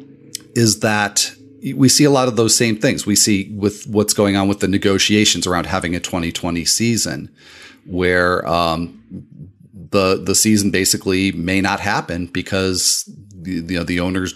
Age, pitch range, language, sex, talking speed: 40-59, 90-105 Hz, English, male, 160 wpm